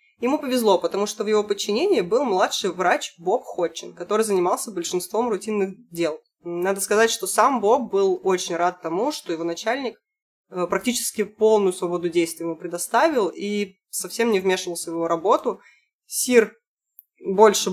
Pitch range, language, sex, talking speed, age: 175-230 Hz, Russian, female, 150 wpm, 20-39